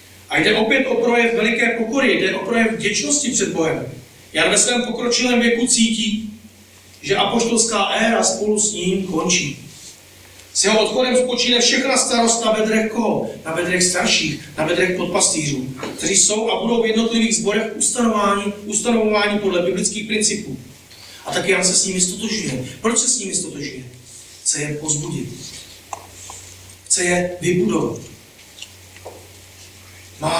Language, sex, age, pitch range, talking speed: Czech, male, 40-59, 150-220 Hz, 140 wpm